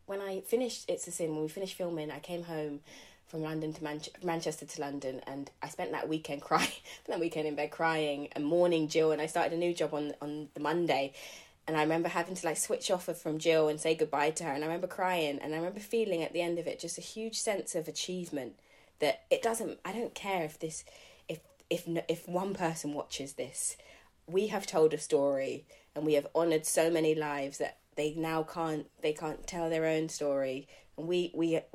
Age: 20-39